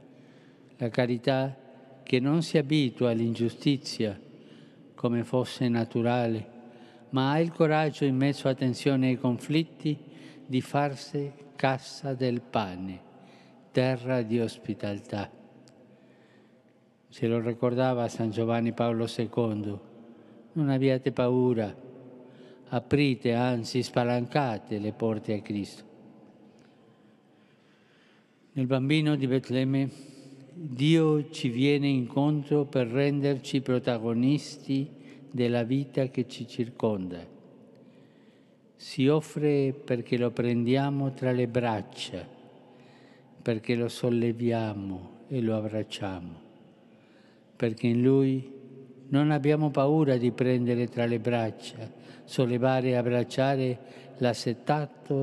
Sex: male